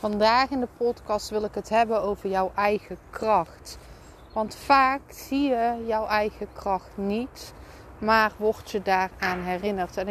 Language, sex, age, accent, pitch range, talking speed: Dutch, female, 30-49, Dutch, 205-255 Hz, 155 wpm